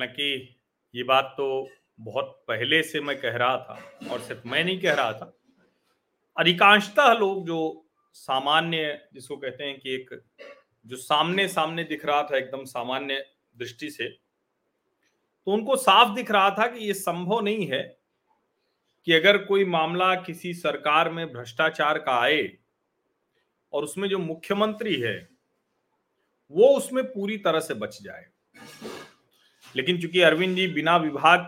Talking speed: 145 wpm